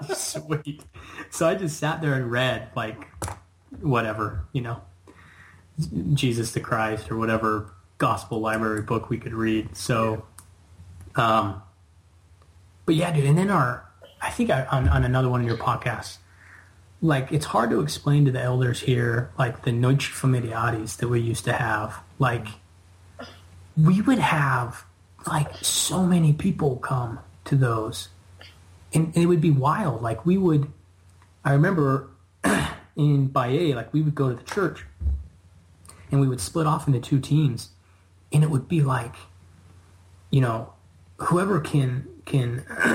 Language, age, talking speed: English, 20-39, 150 wpm